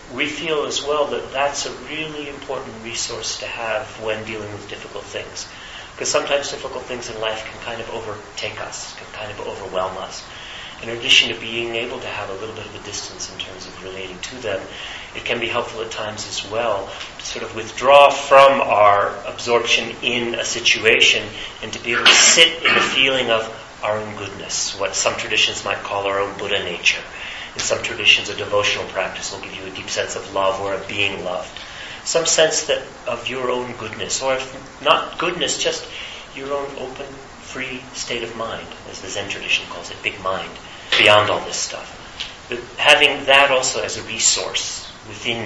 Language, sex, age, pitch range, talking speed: English, male, 40-59, 100-130 Hz, 195 wpm